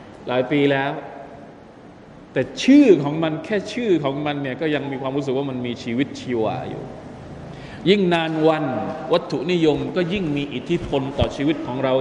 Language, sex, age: Thai, male, 20-39